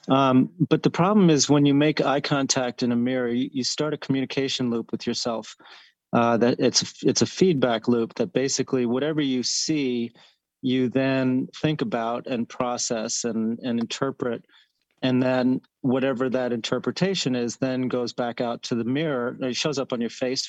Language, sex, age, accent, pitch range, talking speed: English, male, 40-59, American, 120-135 Hz, 175 wpm